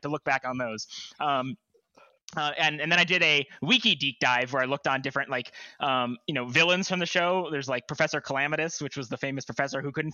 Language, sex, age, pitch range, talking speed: English, male, 20-39, 135-175 Hz, 235 wpm